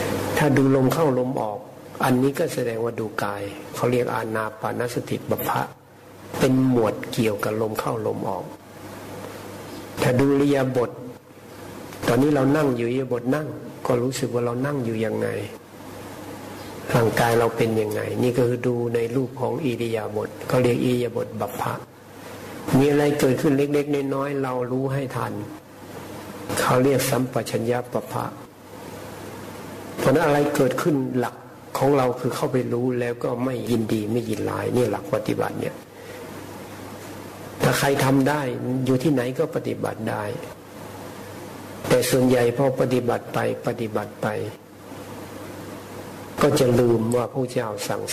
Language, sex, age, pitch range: Thai, male, 60-79, 115-130 Hz